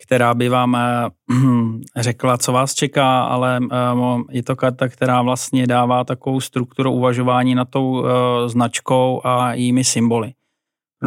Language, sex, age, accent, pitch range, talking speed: Czech, male, 30-49, native, 120-125 Hz, 150 wpm